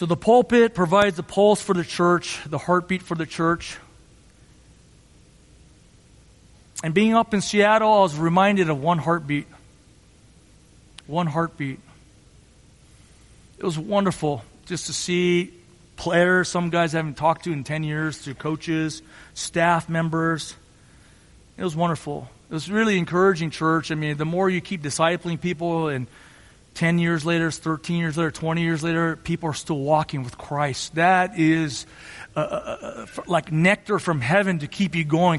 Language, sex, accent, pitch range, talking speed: English, male, American, 155-190 Hz, 155 wpm